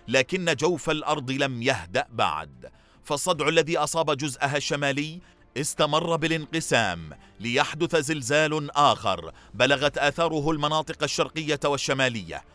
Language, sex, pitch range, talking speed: Arabic, male, 130-155 Hz, 100 wpm